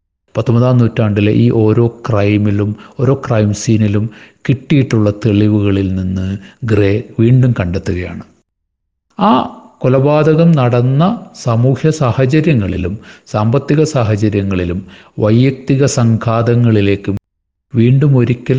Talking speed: 80 wpm